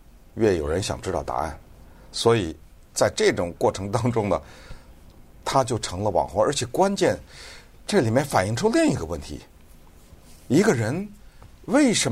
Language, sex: Chinese, male